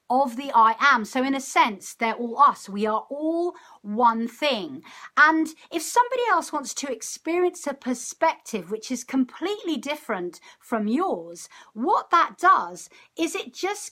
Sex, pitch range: female, 225-330 Hz